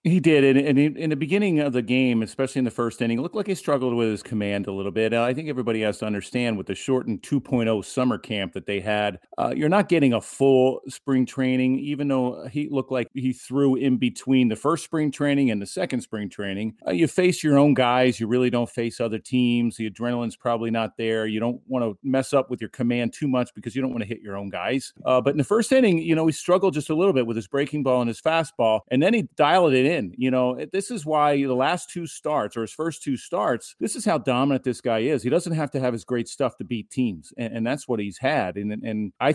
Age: 40-59